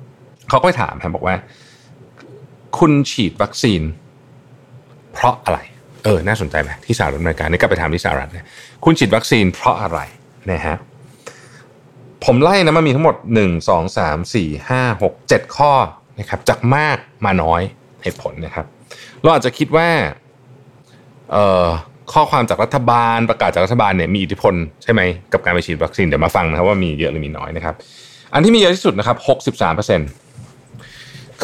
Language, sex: Thai, male